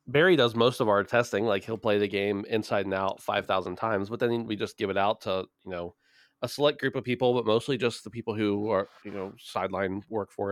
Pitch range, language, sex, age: 95-110 Hz, English, male, 20-39